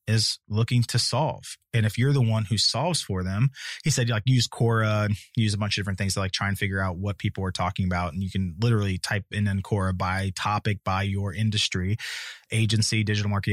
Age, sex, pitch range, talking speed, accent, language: 20-39, male, 100-130 Hz, 225 wpm, American, English